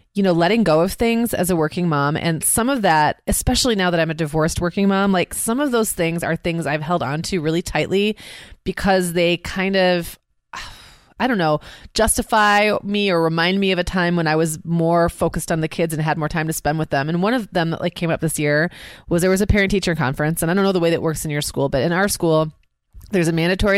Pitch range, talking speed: 160-195 Hz, 250 wpm